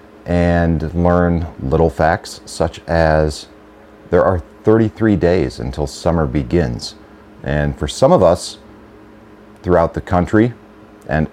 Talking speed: 115 wpm